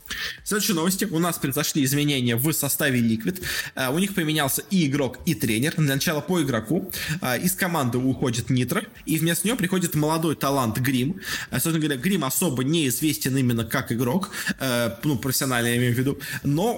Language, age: Russian, 20-39